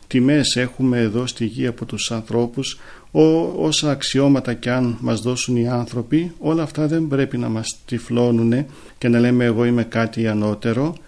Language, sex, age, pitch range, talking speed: Greek, male, 40-59, 115-140 Hz, 170 wpm